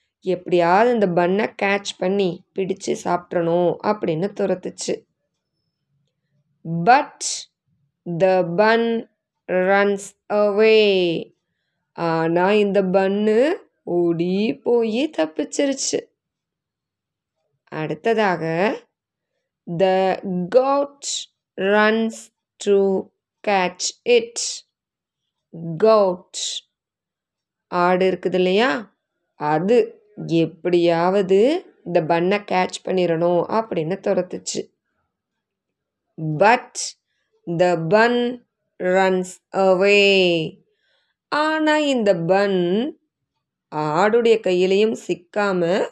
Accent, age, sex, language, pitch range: native, 20-39, female, Tamil, 175-225 Hz